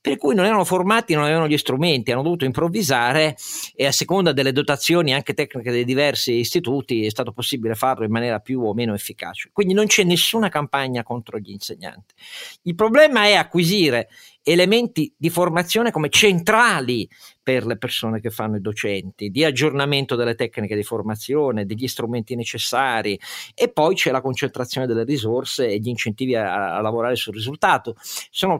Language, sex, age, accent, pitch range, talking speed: Italian, male, 50-69, native, 115-160 Hz, 170 wpm